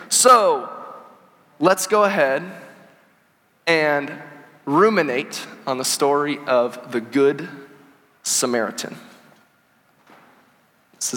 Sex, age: male, 30-49